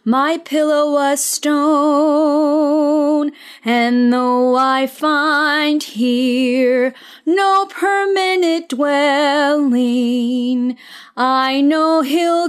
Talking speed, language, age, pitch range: 70 wpm, English, 30-49, 265-365 Hz